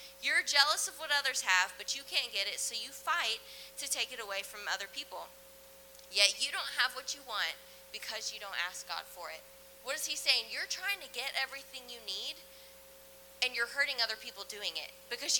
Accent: American